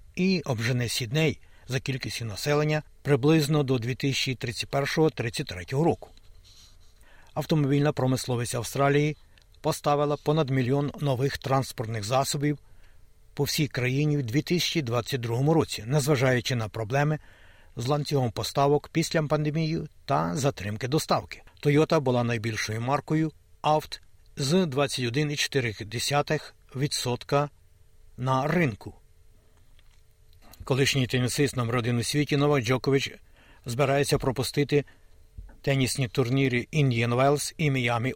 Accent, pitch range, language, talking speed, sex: native, 115-150 Hz, Ukrainian, 95 wpm, male